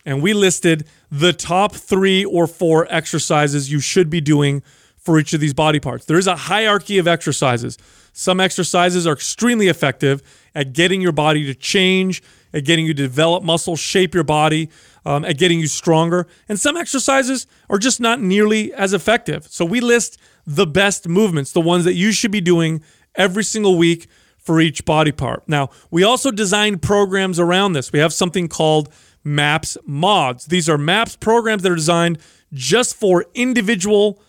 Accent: American